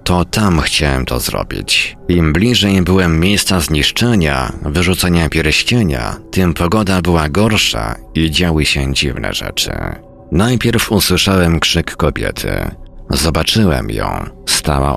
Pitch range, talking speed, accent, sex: 75-95 Hz, 110 wpm, native, male